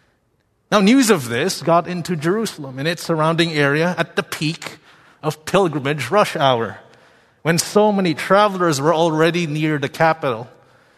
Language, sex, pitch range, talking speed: English, male, 145-180 Hz, 150 wpm